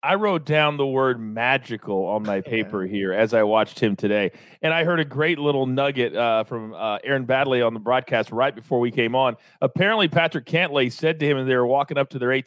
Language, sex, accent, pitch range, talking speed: English, male, American, 150-225 Hz, 230 wpm